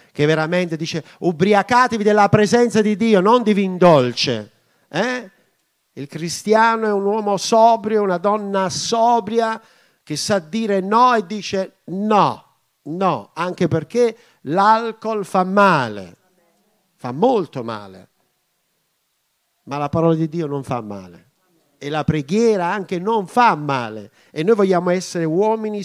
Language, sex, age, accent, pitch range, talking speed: Italian, male, 50-69, native, 150-220 Hz, 130 wpm